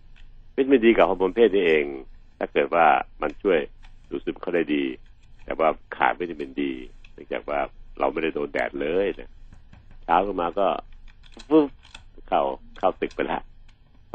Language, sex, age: Thai, male, 60-79